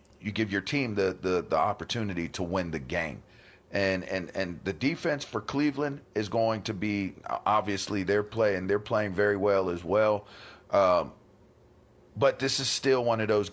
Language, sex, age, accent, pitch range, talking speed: English, male, 40-59, American, 95-110 Hz, 175 wpm